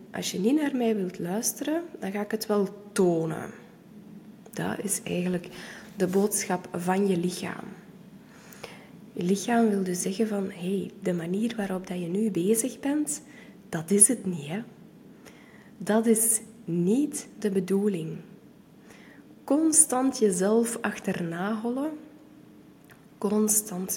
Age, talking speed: 20-39, 130 wpm